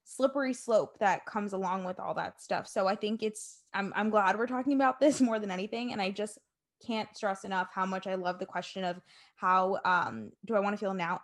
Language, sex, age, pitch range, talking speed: English, female, 20-39, 205-255 Hz, 235 wpm